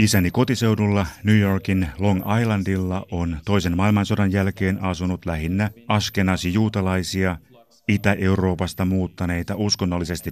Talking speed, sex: 100 wpm, male